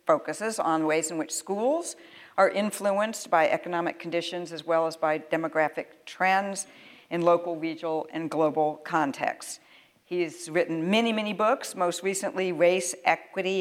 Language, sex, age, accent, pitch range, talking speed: English, female, 60-79, American, 165-195 Hz, 140 wpm